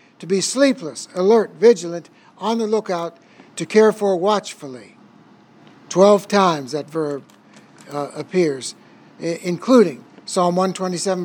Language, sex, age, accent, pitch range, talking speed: English, male, 60-79, American, 170-215 Hz, 110 wpm